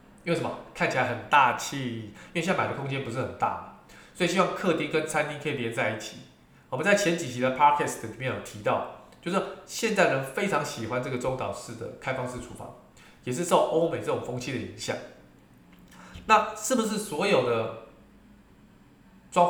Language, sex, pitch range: Chinese, male, 125-185 Hz